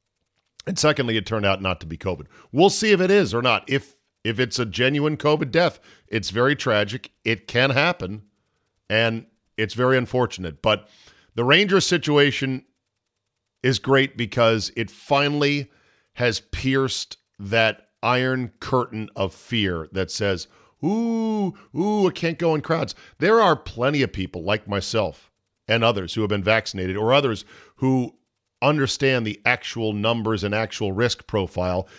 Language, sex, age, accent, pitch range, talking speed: English, male, 50-69, American, 100-130 Hz, 155 wpm